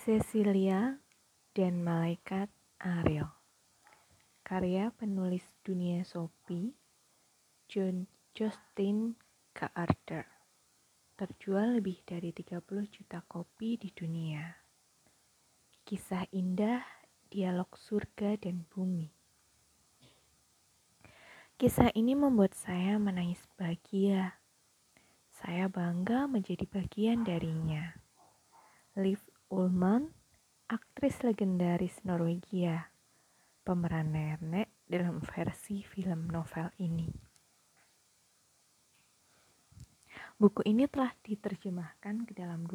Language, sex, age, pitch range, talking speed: Indonesian, female, 20-39, 175-210 Hz, 75 wpm